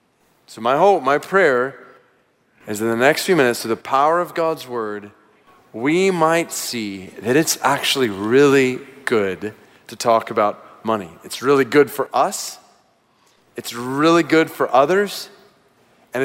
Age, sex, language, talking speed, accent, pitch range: 30-49, male, English, 150 wpm, American, 130-185 Hz